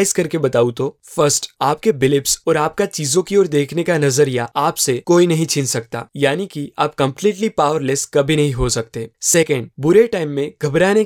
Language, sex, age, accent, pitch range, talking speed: Hindi, male, 20-39, native, 145-190 Hz, 180 wpm